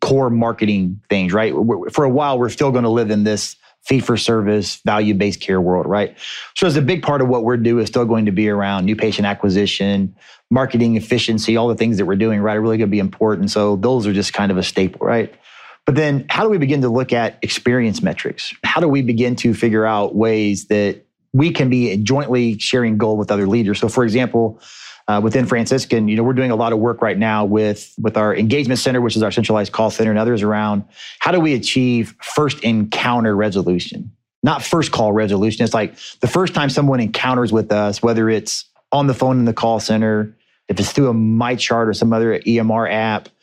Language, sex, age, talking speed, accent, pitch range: English, male, 30-49, 220 wpm, American, 105-125 Hz